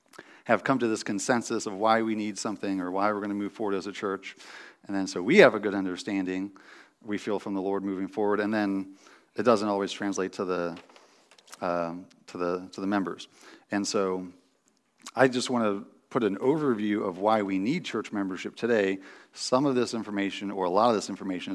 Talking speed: 210 wpm